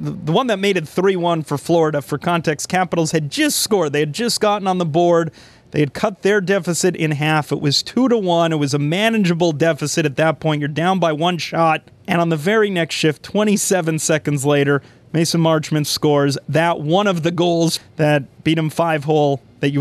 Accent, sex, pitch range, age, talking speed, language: American, male, 145-170 Hz, 30-49, 205 wpm, English